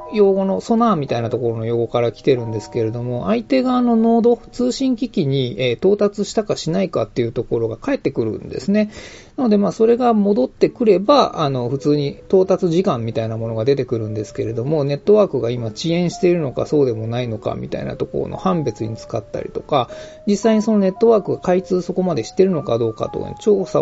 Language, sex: Japanese, male